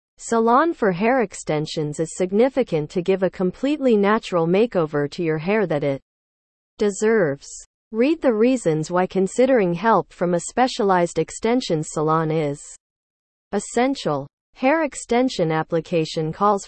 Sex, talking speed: female, 125 wpm